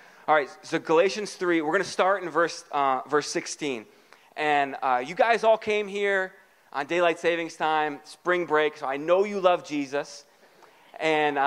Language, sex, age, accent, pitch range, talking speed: English, male, 20-39, American, 135-190 Hz, 180 wpm